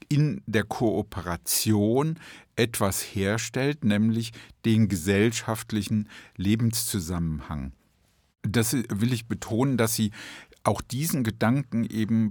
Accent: German